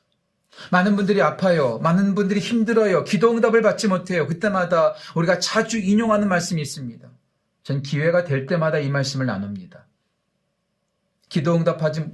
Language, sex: Korean, male